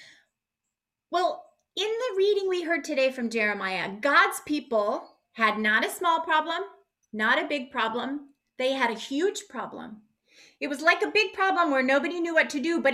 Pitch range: 230-335 Hz